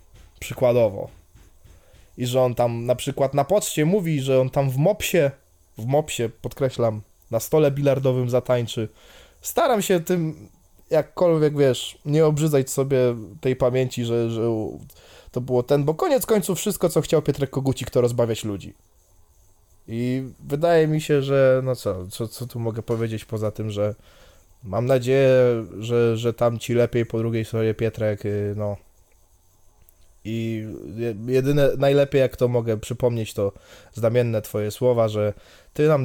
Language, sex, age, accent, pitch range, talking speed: Polish, male, 20-39, native, 95-130 Hz, 150 wpm